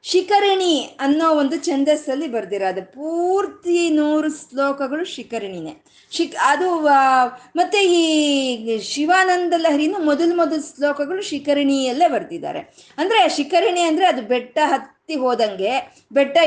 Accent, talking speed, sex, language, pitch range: native, 90 wpm, female, Kannada, 240-320 Hz